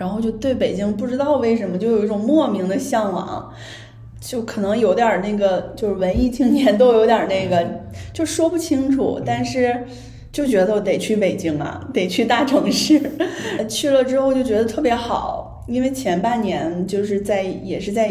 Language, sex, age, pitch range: Chinese, female, 20-39, 175-235 Hz